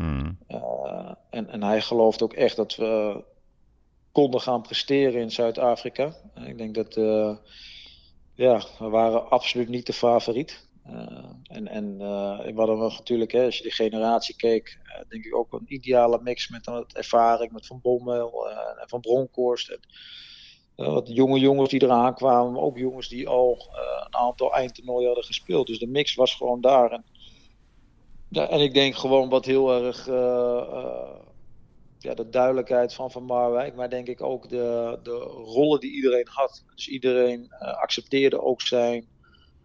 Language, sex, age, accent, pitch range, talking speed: Dutch, male, 40-59, Dutch, 115-130 Hz, 170 wpm